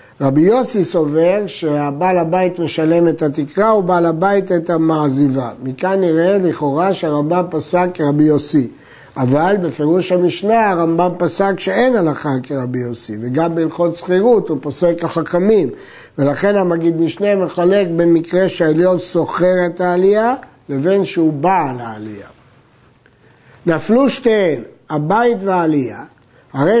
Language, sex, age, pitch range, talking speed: Hebrew, male, 60-79, 155-200 Hz, 120 wpm